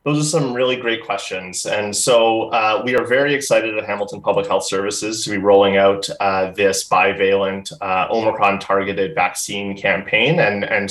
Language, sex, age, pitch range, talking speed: English, male, 30-49, 100-120 Hz, 175 wpm